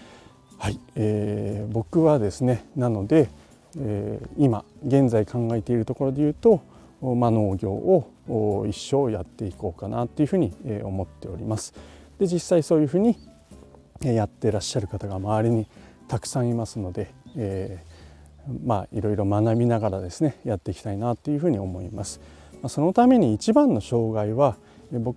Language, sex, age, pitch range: Japanese, male, 40-59, 100-135 Hz